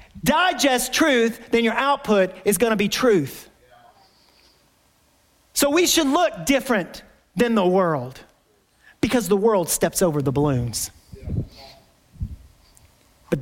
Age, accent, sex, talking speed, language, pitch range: 40-59, American, male, 115 wpm, English, 155-200 Hz